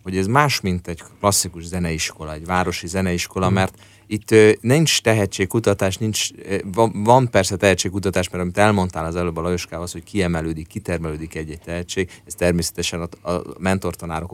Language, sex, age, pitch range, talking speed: Hungarian, male, 30-49, 85-105 Hz, 140 wpm